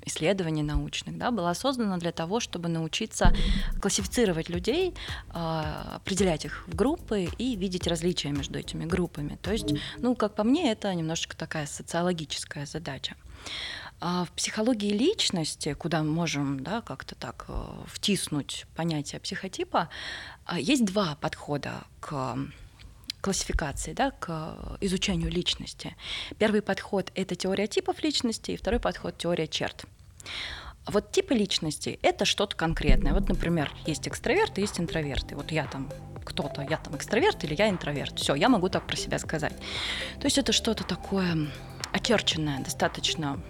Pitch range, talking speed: 150-210 Hz, 140 wpm